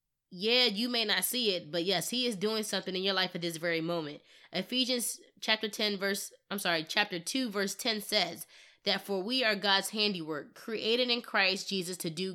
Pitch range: 185-225 Hz